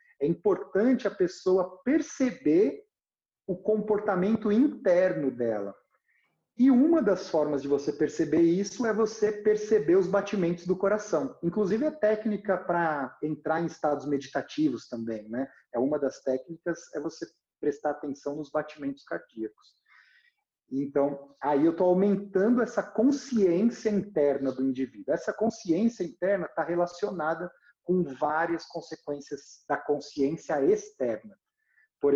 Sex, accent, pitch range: male, Brazilian, 135-210 Hz